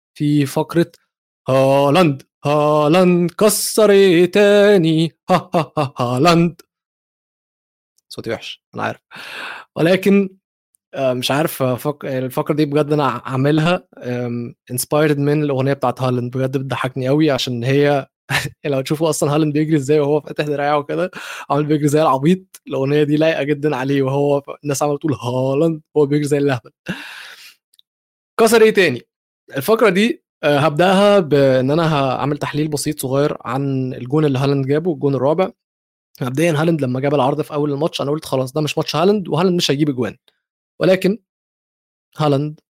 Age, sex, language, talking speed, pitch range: 20-39, male, Arabic, 145 wpm, 140-170 Hz